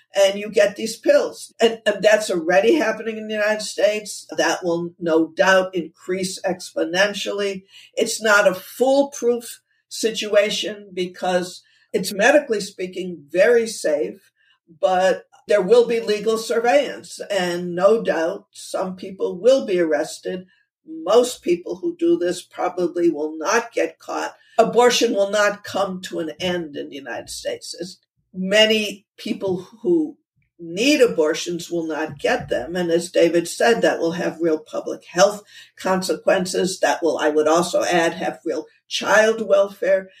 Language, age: English, 60-79